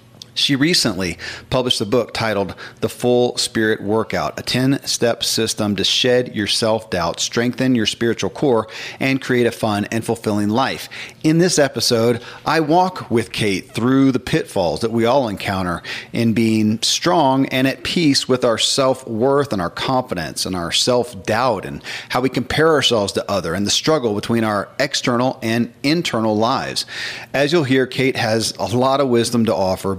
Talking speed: 170 wpm